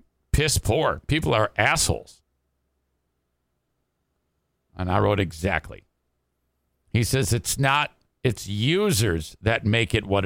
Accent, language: American, English